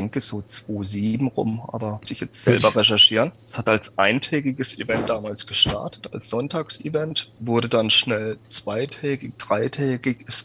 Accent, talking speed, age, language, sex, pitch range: German, 140 wpm, 30-49, German, male, 110-130 Hz